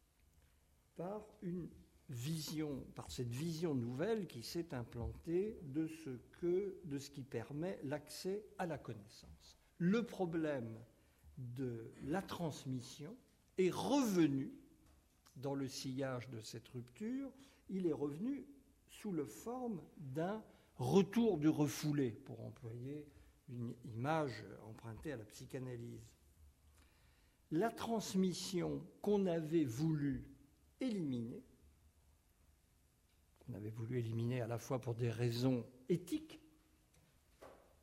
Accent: French